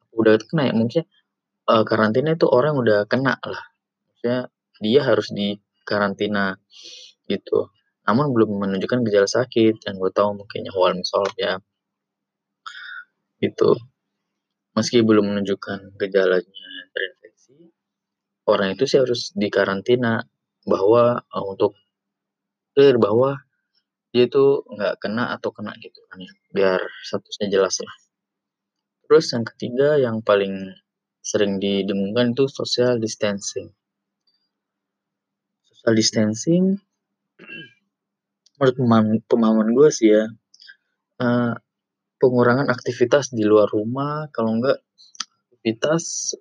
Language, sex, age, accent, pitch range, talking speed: Indonesian, male, 20-39, native, 105-130 Hz, 105 wpm